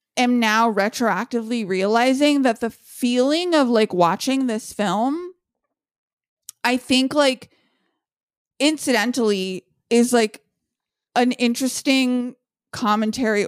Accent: American